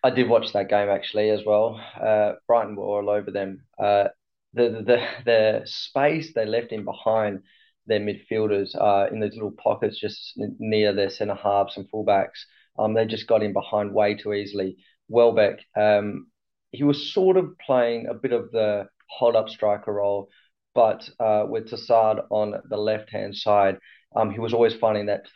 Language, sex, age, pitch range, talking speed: English, male, 20-39, 105-120 Hz, 180 wpm